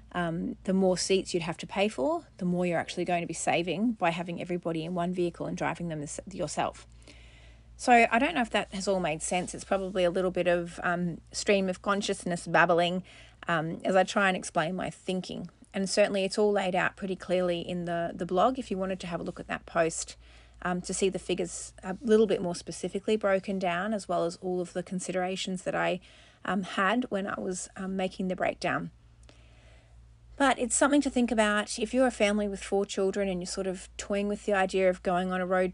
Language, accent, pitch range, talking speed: English, Australian, 180-205 Hz, 225 wpm